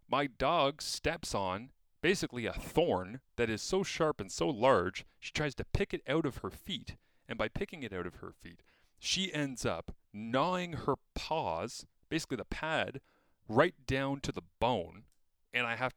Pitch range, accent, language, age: 95-140 Hz, American, English, 30-49